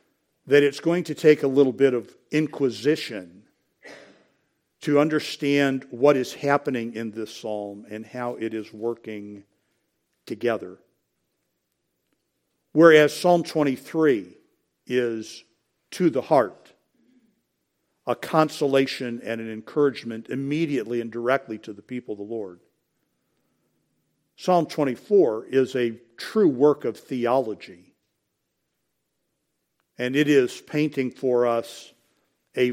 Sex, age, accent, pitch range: male, 50-69, American, 115-150 Hz